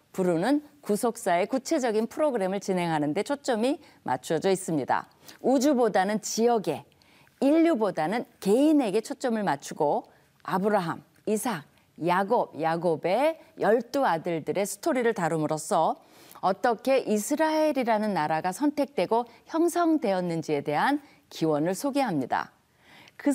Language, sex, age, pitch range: Korean, female, 40-59, 185-280 Hz